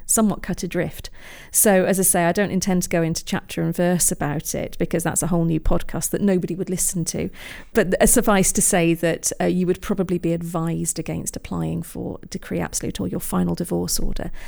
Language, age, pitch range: English, 40-59, 165-205 Hz